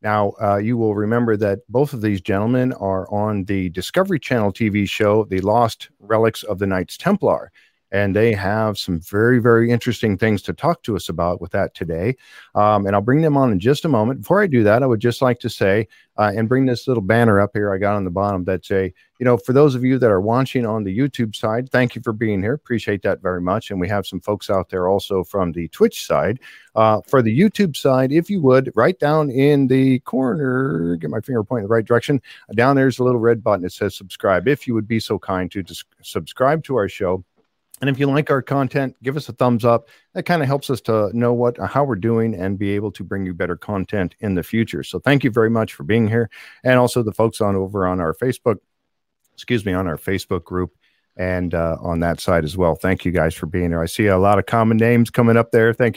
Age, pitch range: 50-69, 95-125 Hz